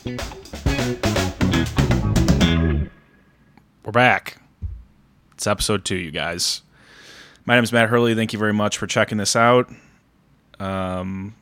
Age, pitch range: 20-39, 95-110 Hz